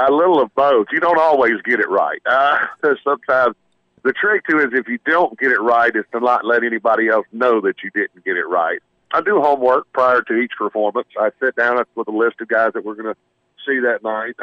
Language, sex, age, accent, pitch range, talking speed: English, male, 50-69, American, 110-125 Hz, 235 wpm